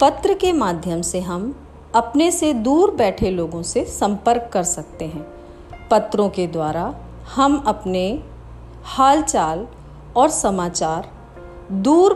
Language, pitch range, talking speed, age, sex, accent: Hindi, 175-265 Hz, 120 wpm, 40-59, female, native